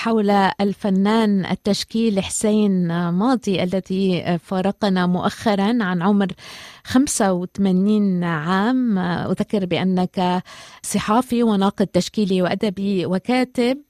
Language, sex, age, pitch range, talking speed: Arabic, female, 20-39, 190-240 Hz, 80 wpm